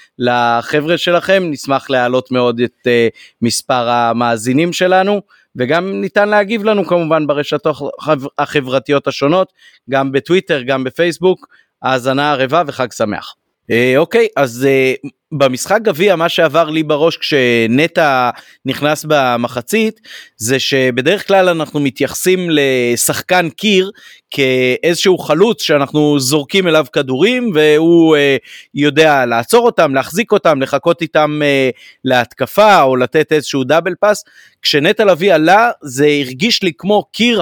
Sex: male